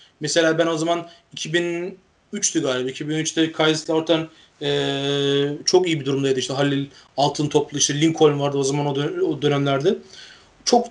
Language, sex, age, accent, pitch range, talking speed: Turkish, male, 30-49, native, 145-195 Hz, 155 wpm